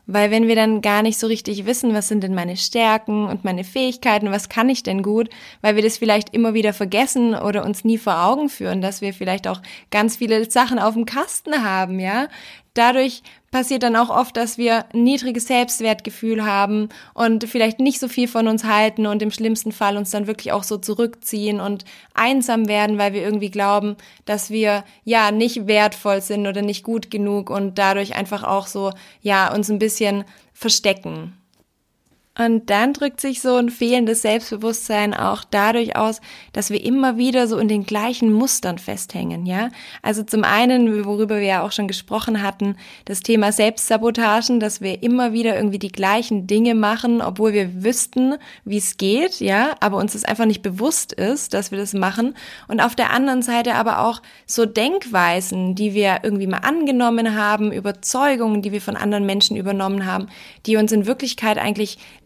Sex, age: female, 20-39